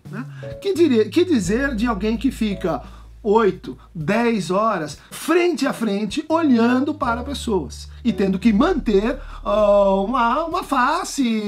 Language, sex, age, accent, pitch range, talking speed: Portuguese, male, 50-69, Brazilian, 195-275 Hz, 135 wpm